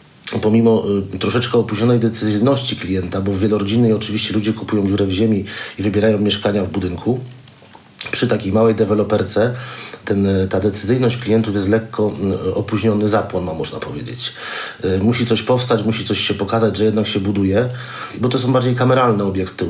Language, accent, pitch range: Polish, native, 100-120 Hz